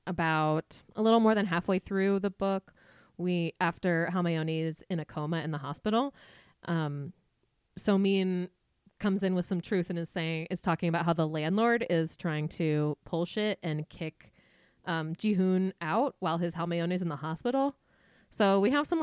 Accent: American